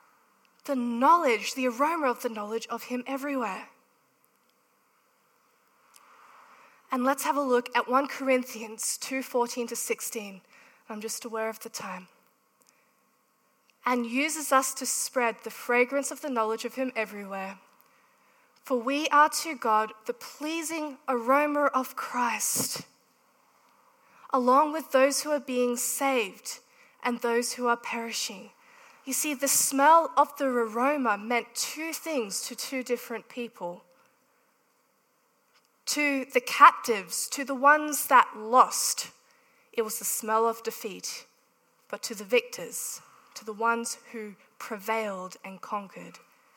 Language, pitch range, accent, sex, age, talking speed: English, 225-275 Hz, Australian, female, 20-39, 130 wpm